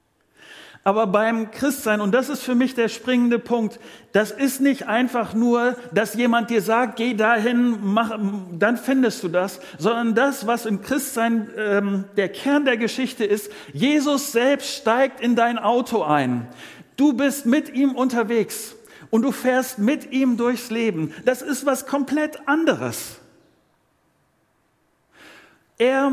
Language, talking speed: German, 145 wpm